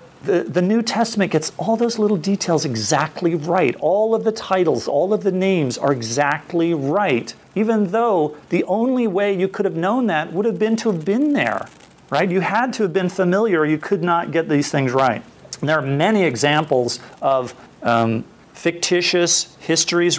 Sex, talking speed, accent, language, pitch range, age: male, 180 wpm, American, English, 130-175 Hz, 40-59